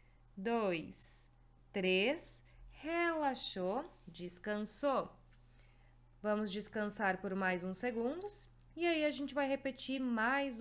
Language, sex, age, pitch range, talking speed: Portuguese, female, 20-39, 190-265 Hz, 95 wpm